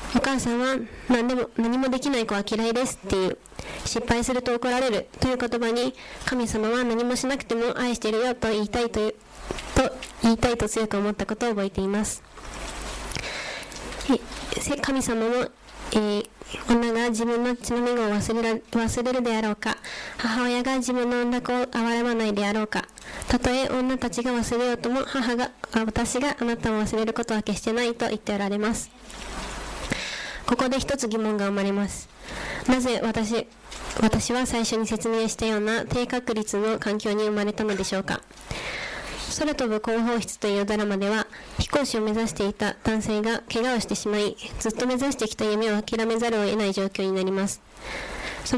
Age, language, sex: 20-39, Japanese, female